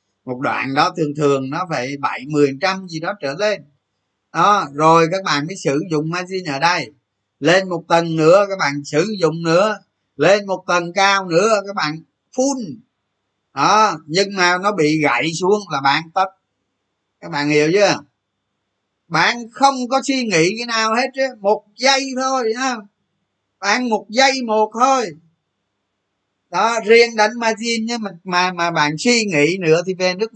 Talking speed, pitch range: 175 wpm, 145-205 Hz